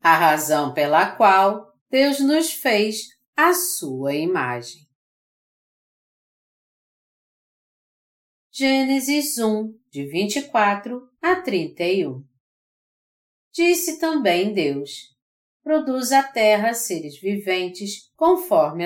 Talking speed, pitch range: 80 wpm, 160-265 Hz